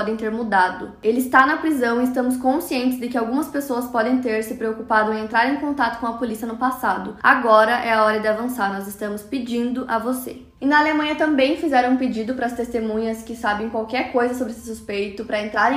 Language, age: Portuguese, 10-29